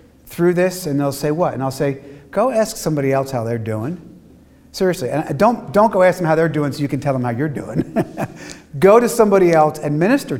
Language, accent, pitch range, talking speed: English, American, 130-180 Hz, 230 wpm